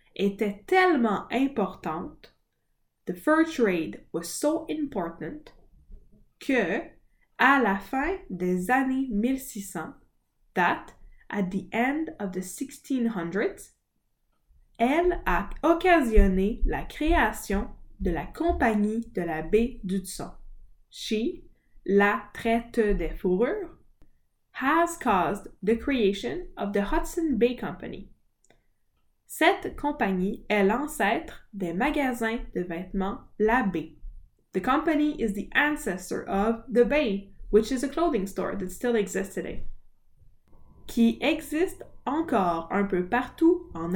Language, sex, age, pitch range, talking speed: French, female, 10-29, 195-280 Hz, 115 wpm